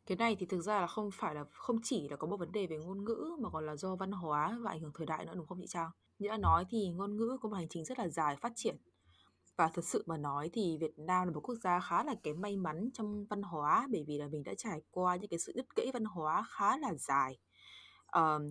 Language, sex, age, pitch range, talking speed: Vietnamese, female, 20-39, 155-210 Hz, 285 wpm